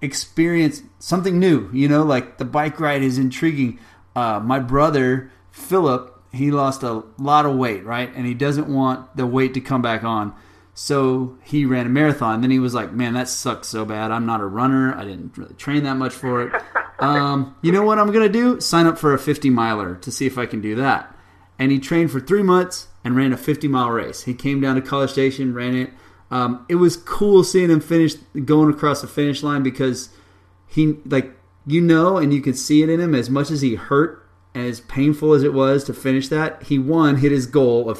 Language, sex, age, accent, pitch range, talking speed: English, male, 30-49, American, 120-150 Hz, 225 wpm